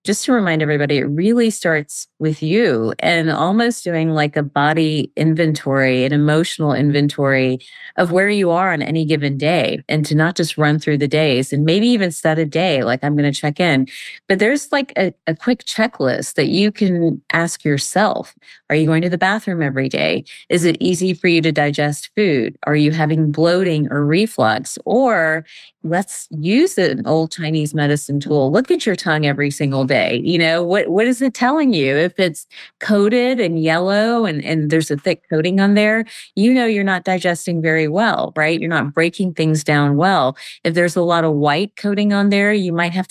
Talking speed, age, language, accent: 200 wpm, 30-49, English, American